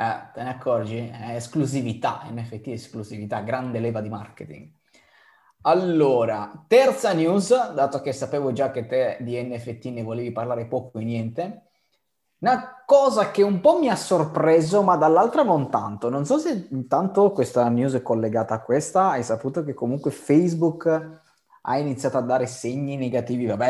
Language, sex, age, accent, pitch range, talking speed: Italian, male, 20-39, native, 115-160 Hz, 155 wpm